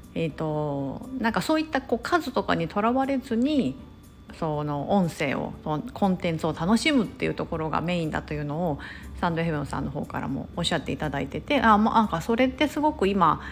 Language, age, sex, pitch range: Japanese, 40-59, female, 165-255 Hz